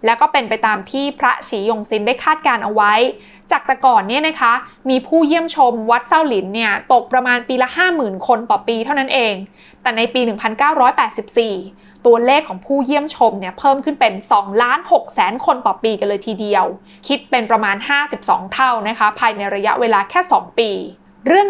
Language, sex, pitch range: Thai, female, 220-285 Hz